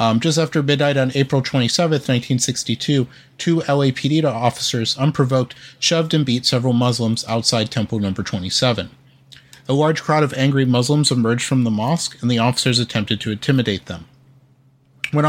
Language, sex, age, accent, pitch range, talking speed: English, male, 30-49, American, 120-145 Hz, 155 wpm